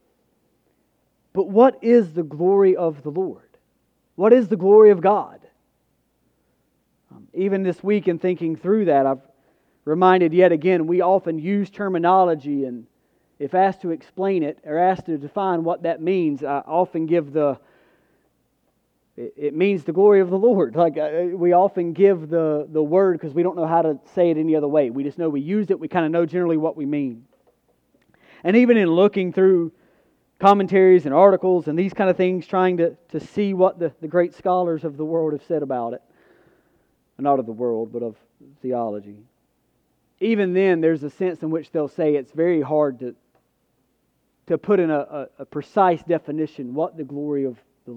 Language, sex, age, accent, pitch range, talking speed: English, male, 40-59, American, 150-190 Hz, 185 wpm